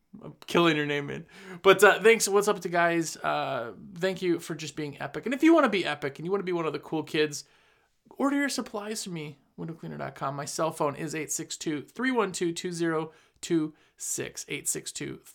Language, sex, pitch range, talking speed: English, male, 155-195 Hz, 185 wpm